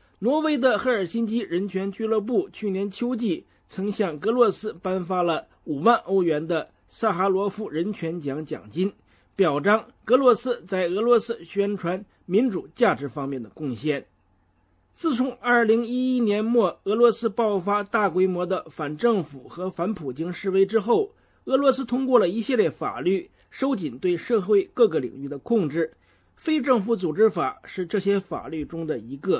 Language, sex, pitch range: English, male, 160-235 Hz